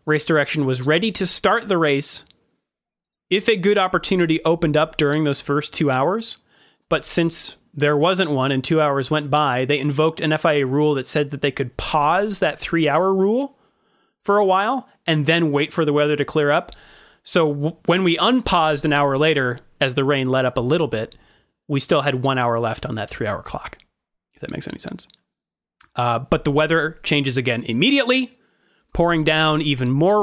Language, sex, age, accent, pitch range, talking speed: English, male, 30-49, American, 135-175 Hz, 195 wpm